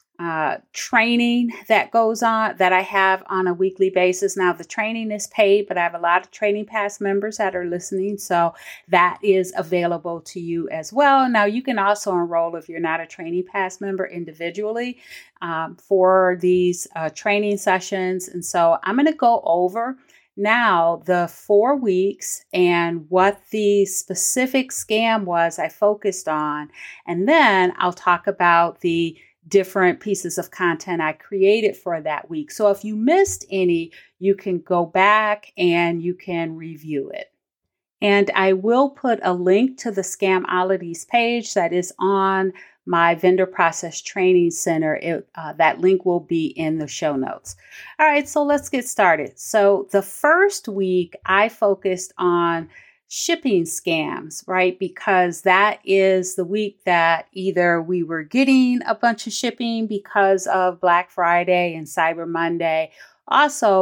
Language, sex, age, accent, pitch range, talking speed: English, female, 30-49, American, 175-210 Hz, 160 wpm